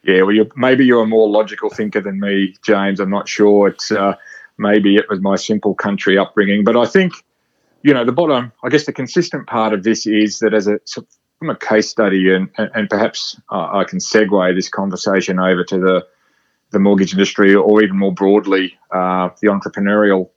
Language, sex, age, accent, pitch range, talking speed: English, male, 30-49, Australian, 95-110 Hz, 190 wpm